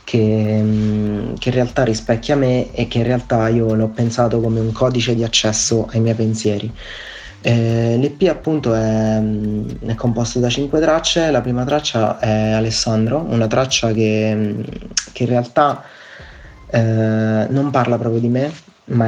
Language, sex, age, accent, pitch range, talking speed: Italian, male, 30-49, native, 110-125 Hz, 150 wpm